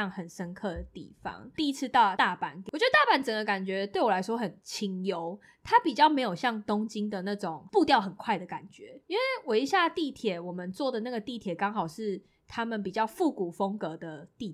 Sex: female